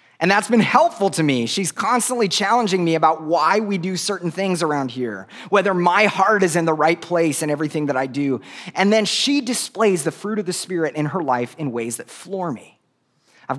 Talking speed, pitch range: 215 wpm, 125-170 Hz